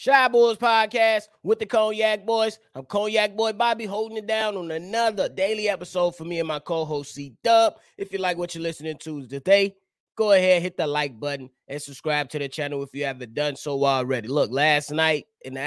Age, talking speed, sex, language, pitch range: 20-39, 205 wpm, male, English, 145-195 Hz